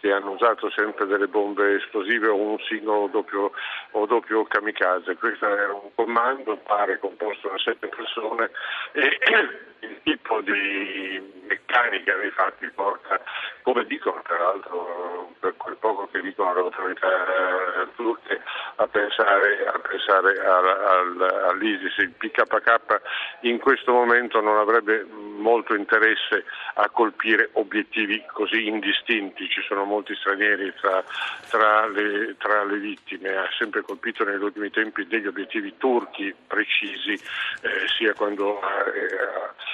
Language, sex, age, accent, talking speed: Italian, male, 70-89, native, 125 wpm